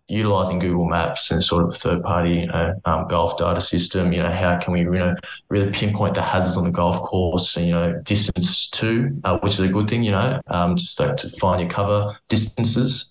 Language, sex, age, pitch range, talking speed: English, male, 20-39, 85-100 Hz, 230 wpm